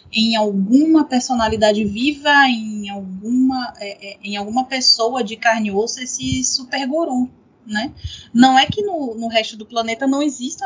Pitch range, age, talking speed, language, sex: 225-295 Hz, 20-39, 165 wpm, Portuguese, female